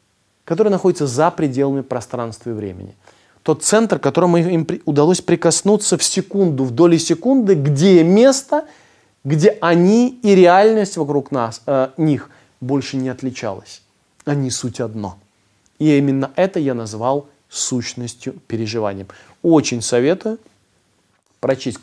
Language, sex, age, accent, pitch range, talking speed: Russian, male, 20-39, native, 115-170 Hz, 120 wpm